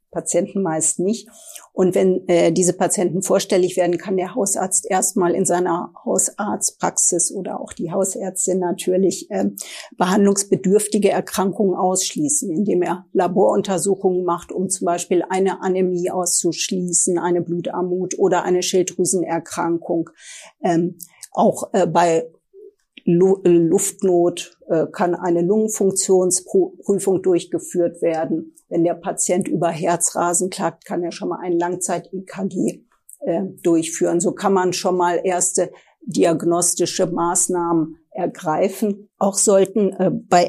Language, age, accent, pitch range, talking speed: German, 50-69, German, 175-195 Hz, 115 wpm